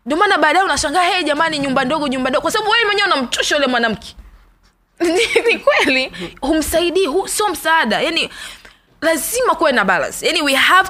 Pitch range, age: 220-305 Hz, 20-39